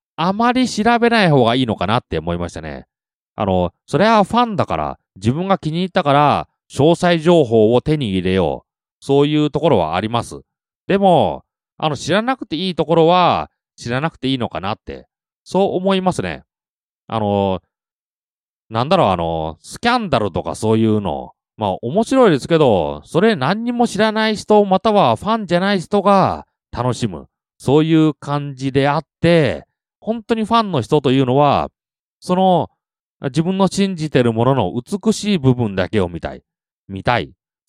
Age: 30-49